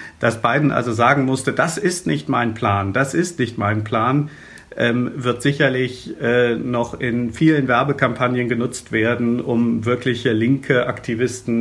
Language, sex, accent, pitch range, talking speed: German, male, German, 110-125 Hz, 150 wpm